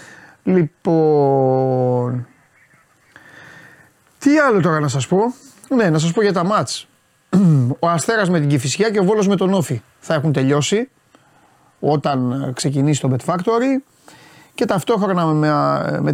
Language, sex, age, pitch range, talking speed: Greek, male, 30-49, 140-190 Hz, 135 wpm